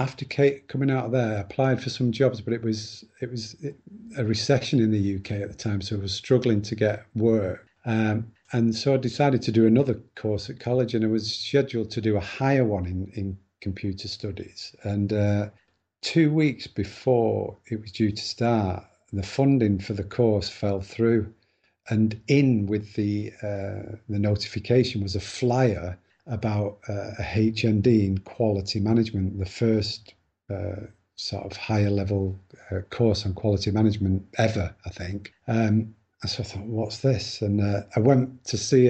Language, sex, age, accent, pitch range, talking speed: English, male, 40-59, British, 100-115 Hz, 180 wpm